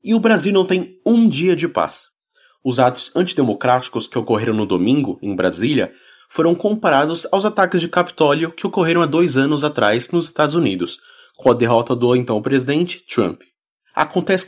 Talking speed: 170 wpm